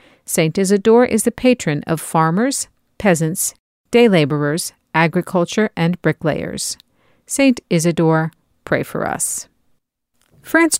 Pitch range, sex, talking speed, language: 165-205 Hz, female, 100 wpm, English